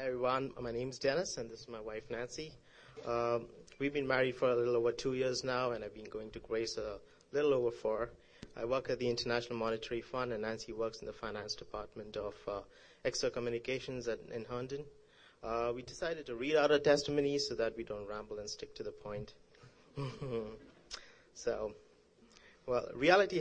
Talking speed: 190 wpm